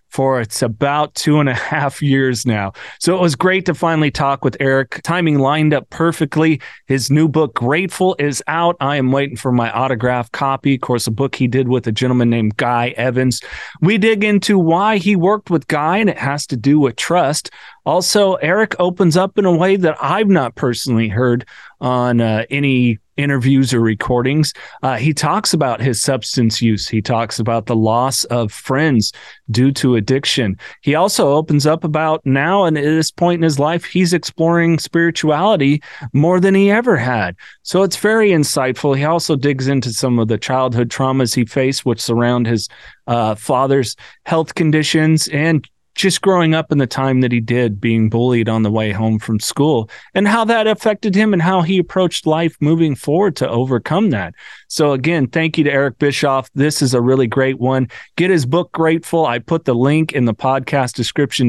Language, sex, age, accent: English, male, 30-49, American